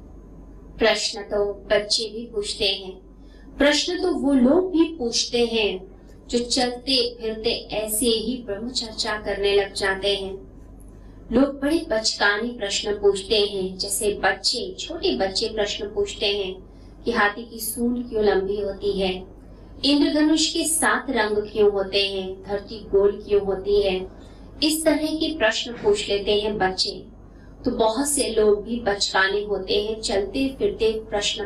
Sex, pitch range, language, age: female, 200-245 Hz, Hindi, 20-39